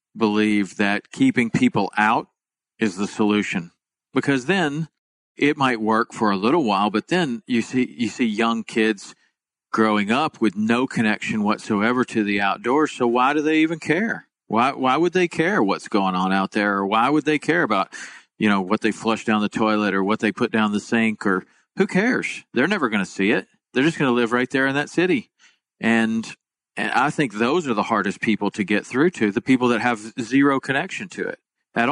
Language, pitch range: English, 105-130 Hz